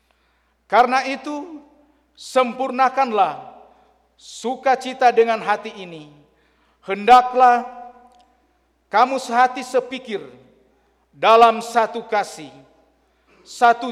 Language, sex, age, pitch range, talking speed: Indonesian, male, 50-69, 195-255 Hz, 65 wpm